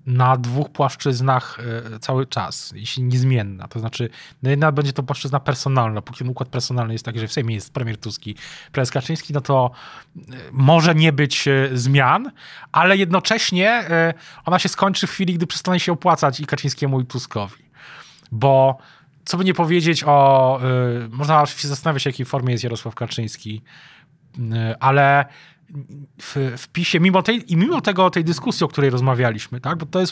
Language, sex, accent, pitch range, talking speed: Polish, male, native, 125-160 Hz, 165 wpm